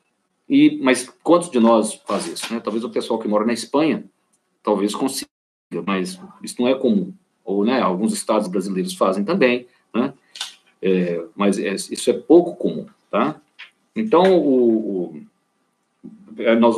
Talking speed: 150 wpm